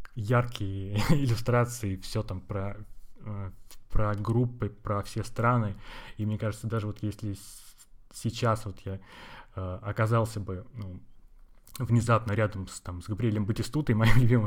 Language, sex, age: Russian, male, 20-39